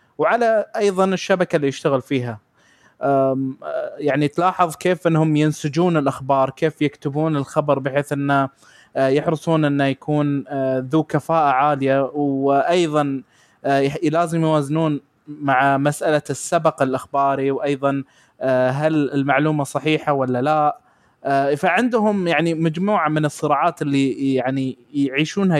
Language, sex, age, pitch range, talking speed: Arabic, male, 20-39, 140-165 Hz, 105 wpm